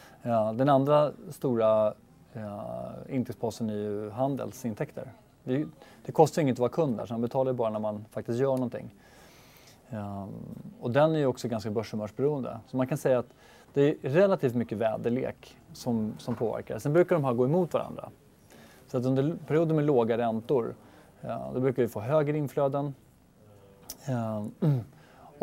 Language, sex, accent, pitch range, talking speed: Swedish, male, native, 110-135 Hz, 165 wpm